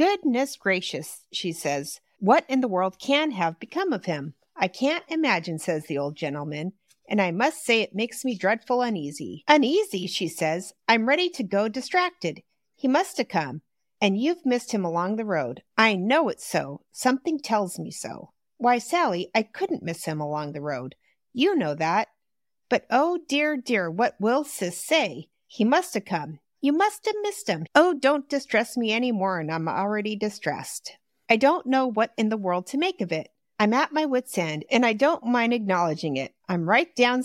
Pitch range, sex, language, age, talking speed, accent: 185-285 Hz, female, English, 50-69, 195 wpm, American